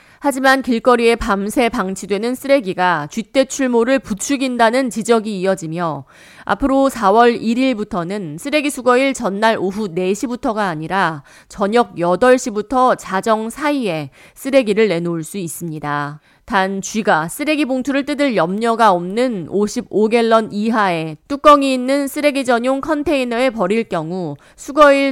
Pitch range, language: 180-265 Hz, Korean